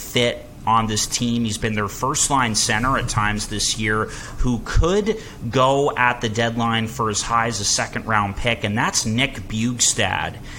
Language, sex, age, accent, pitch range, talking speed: English, male, 30-49, American, 100-115 Hz, 180 wpm